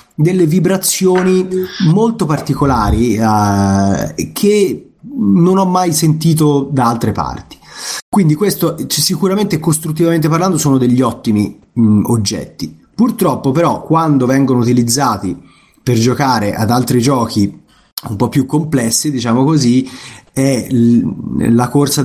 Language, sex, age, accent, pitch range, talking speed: Italian, male, 30-49, native, 115-150 Hz, 110 wpm